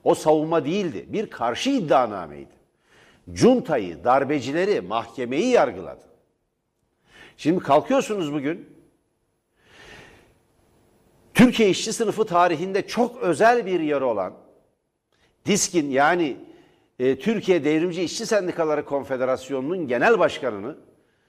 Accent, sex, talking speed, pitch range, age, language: native, male, 85 wpm, 130-200 Hz, 60-79, Turkish